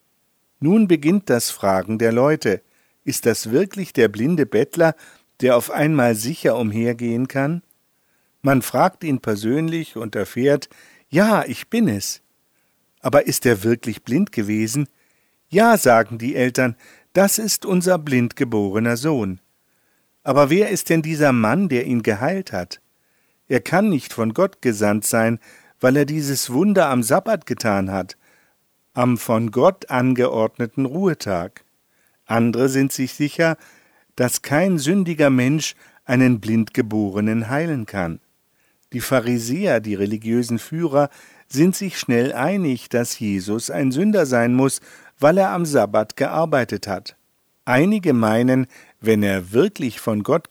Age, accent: 50-69, German